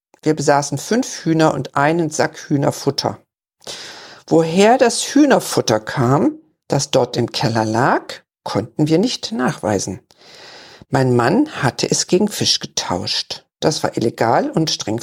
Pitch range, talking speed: 135-170 Hz, 130 wpm